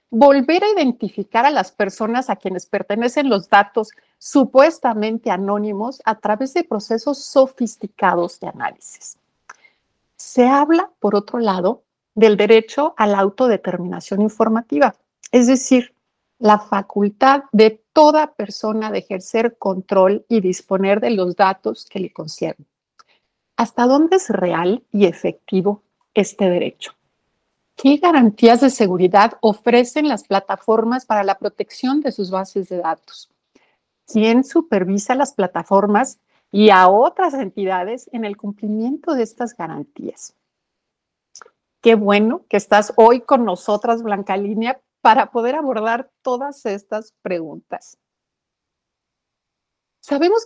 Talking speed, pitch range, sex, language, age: 120 wpm, 200-260 Hz, female, Spanish, 50-69